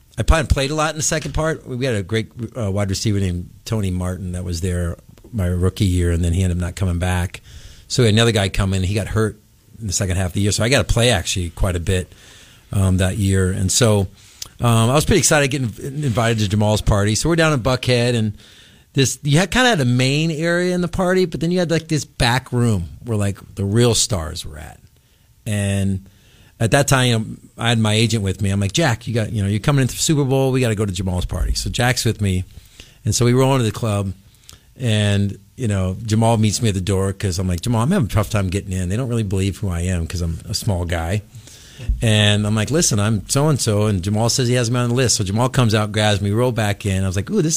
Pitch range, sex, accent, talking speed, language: 95-125 Hz, male, American, 270 wpm, English